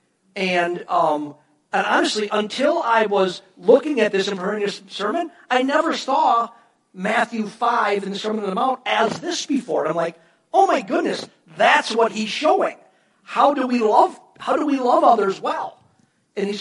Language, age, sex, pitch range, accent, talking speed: English, 40-59, male, 185-255 Hz, American, 180 wpm